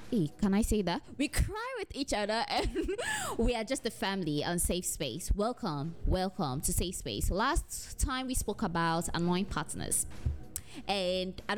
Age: 20-39